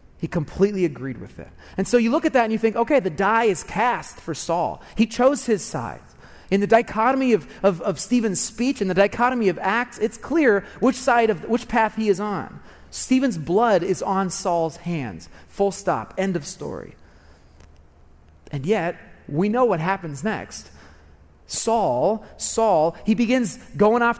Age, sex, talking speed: 30-49, male, 180 wpm